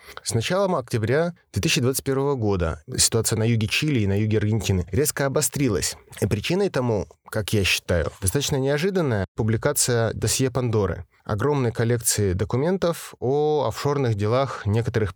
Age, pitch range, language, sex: 20-39, 105-130 Hz, Russian, male